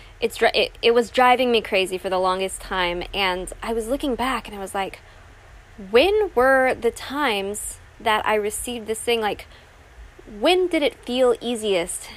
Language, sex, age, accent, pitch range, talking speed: English, female, 20-39, American, 185-235 Hz, 175 wpm